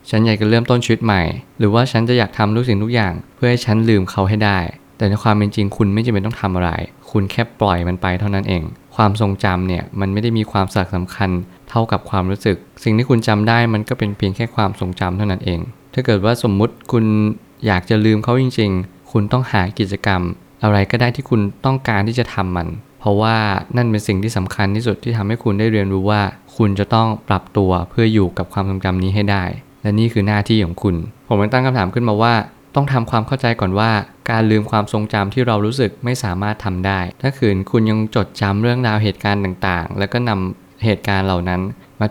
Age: 20-39